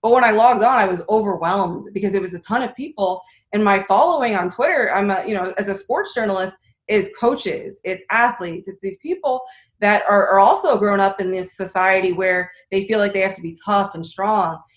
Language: English